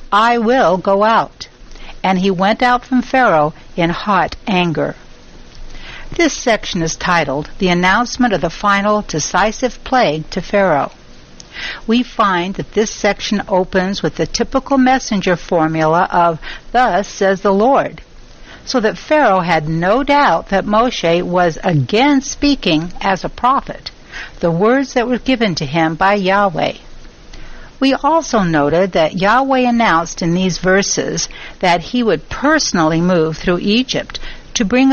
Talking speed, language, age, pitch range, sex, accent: 145 wpm, English, 60-79, 180-245 Hz, female, American